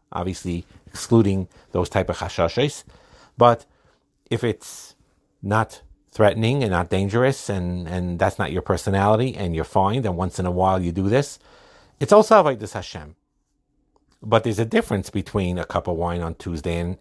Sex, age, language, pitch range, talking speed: male, 50-69, English, 90-115 Hz, 165 wpm